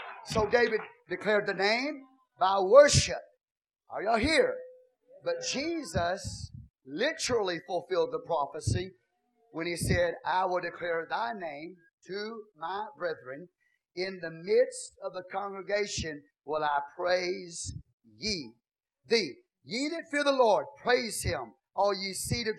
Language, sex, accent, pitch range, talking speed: English, male, American, 180-270 Hz, 130 wpm